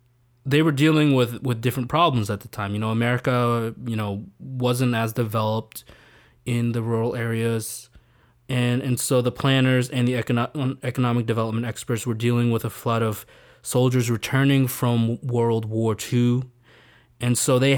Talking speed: 160 wpm